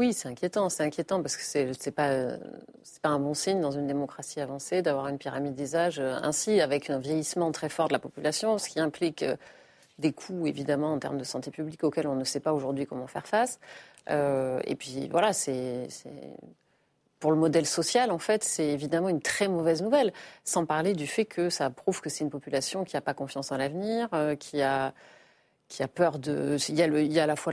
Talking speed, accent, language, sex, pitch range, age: 230 wpm, French, French, female, 145-180 Hz, 30-49